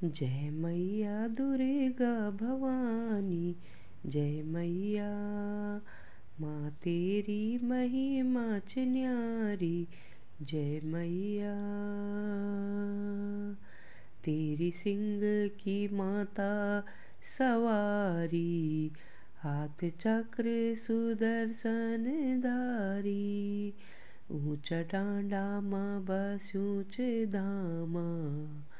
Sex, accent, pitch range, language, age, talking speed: female, native, 170-225 Hz, Hindi, 20-39, 55 wpm